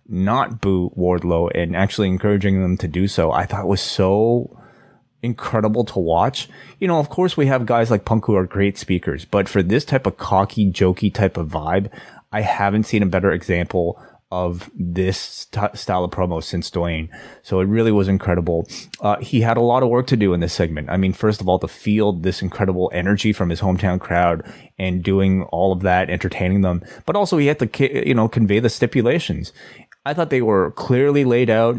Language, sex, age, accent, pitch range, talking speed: English, male, 30-49, American, 90-110 Hz, 205 wpm